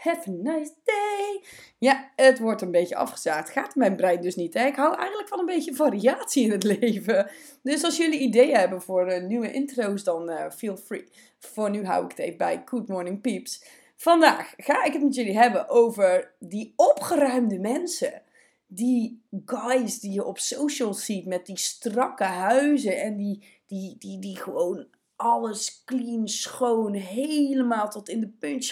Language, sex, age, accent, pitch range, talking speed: Dutch, female, 20-39, Dutch, 215-290 Hz, 175 wpm